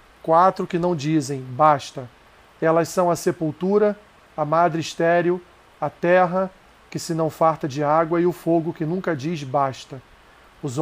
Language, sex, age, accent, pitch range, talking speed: Portuguese, male, 40-59, Brazilian, 155-175 Hz, 155 wpm